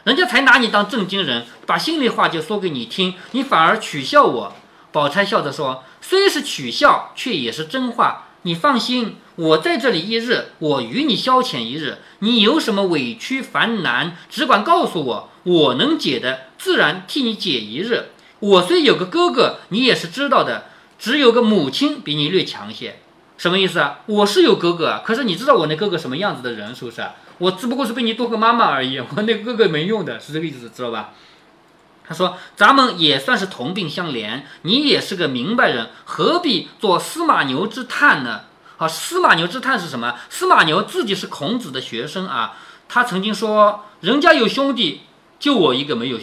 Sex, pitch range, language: male, 175-255 Hz, Chinese